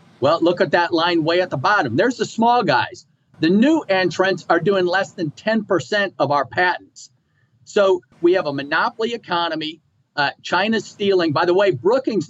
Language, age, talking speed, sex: English, 50-69, 180 wpm, male